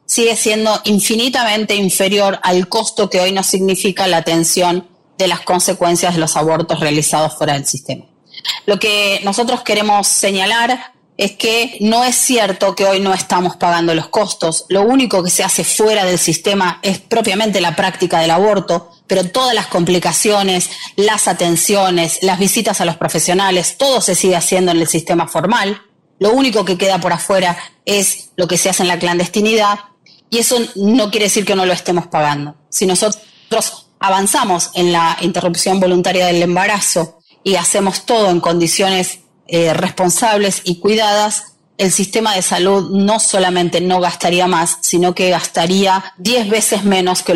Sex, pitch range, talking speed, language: female, 170-205 Hz, 165 wpm, Spanish